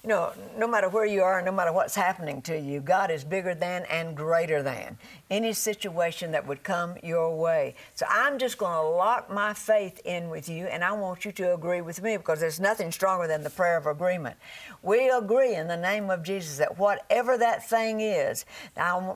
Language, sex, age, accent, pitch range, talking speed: English, female, 60-79, American, 170-225 Hz, 215 wpm